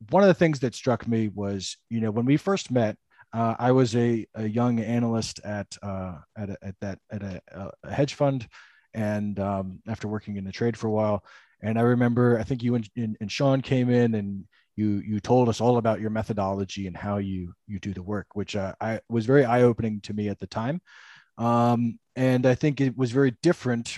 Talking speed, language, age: 225 wpm, English, 20-39